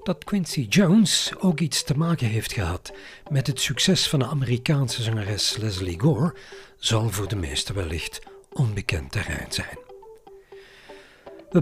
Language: Dutch